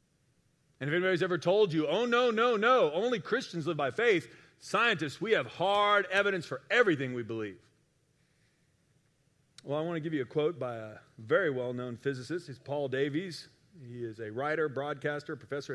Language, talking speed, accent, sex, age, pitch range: English, 175 wpm, American, male, 40-59, 135-175 Hz